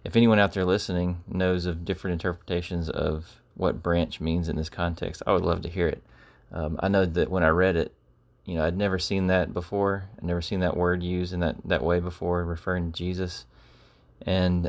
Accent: American